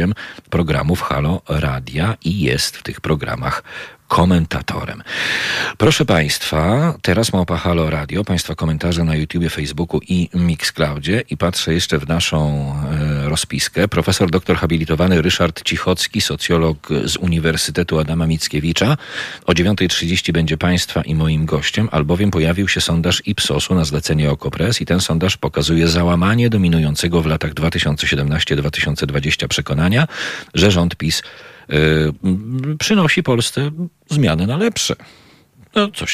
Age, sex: 40-59, male